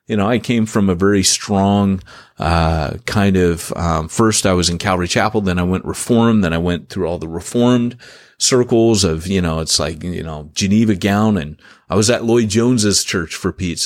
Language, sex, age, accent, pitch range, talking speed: English, male, 30-49, American, 85-110 Hz, 210 wpm